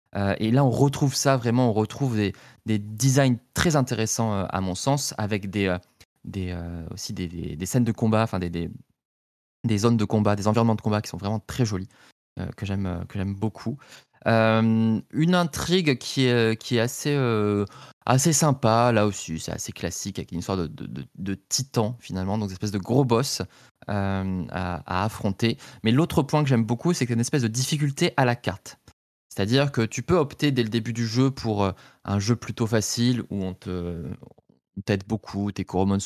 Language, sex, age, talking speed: French, male, 20-39, 210 wpm